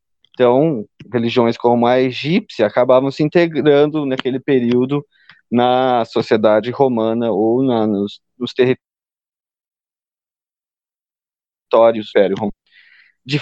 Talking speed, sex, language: 80 wpm, male, Portuguese